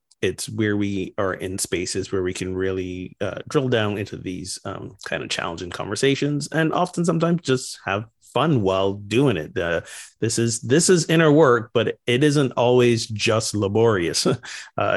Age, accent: 30-49, American